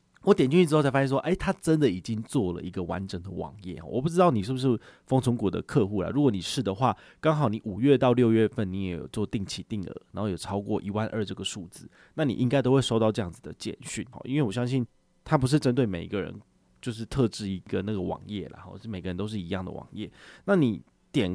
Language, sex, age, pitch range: Chinese, male, 30-49, 100-135 Hz